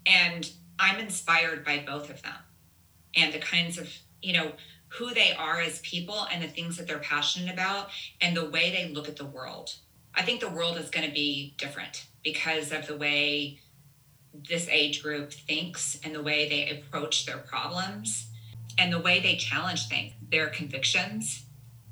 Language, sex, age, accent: English, female, 30-49, American